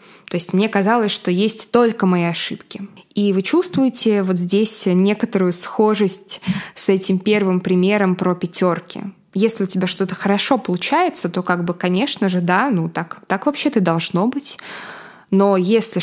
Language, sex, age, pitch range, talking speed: Russian, female, 20-39, 185-220 Hz, 155 wpm